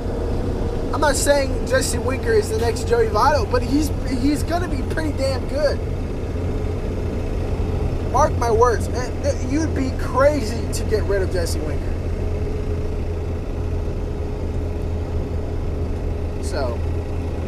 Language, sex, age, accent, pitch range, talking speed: English, male, 20-39, American, 85-90 Hz, 110 wpm